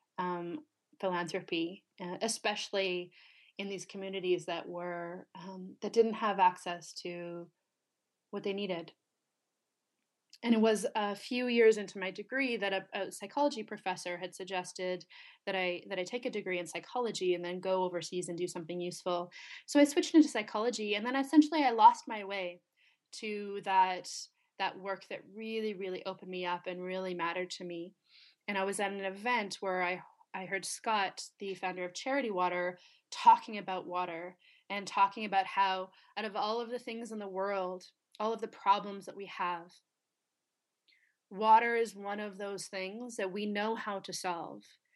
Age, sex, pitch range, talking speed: 20-39, female, 180-220 Hz, 170 wpm